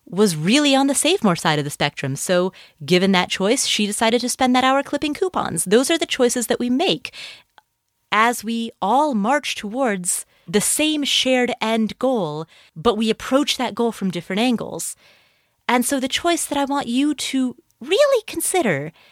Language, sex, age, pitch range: English, female, 30-49, 185-270 Hz